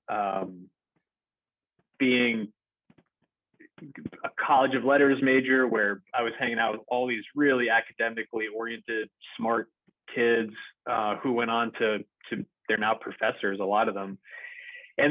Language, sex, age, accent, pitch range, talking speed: English, male, 30-49, American, 115-135 Hz, 135 wpm